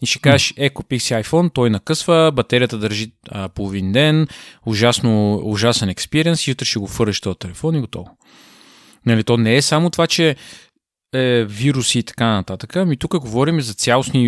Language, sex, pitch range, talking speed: Bulgarian, male, 110-140 Hz, 170 wpm